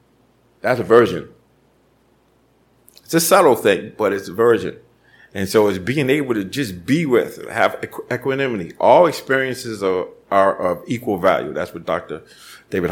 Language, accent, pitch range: English, American, 105-135 Hz